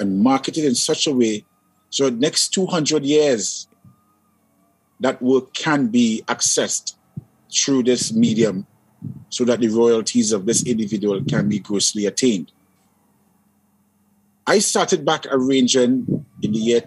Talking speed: 135 wpm